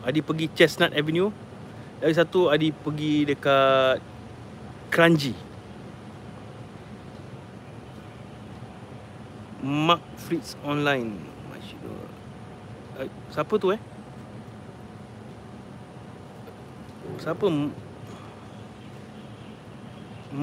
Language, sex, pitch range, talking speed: Malay, male, 115-155 Hz, 50 wpm